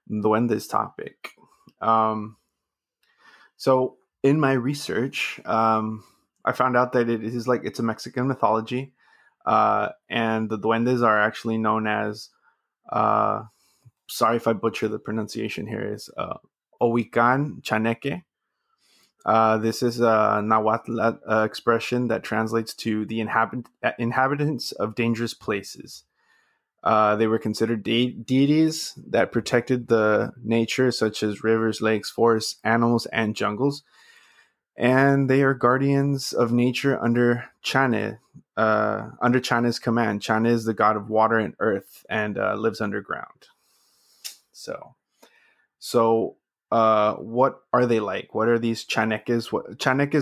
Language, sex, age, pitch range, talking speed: English, male, 20-39, 110-125 Hz, 125 wpm